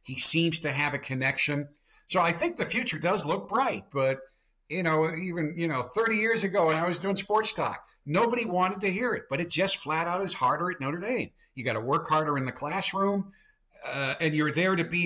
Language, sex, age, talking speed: English, male, 50-69, 230 wpm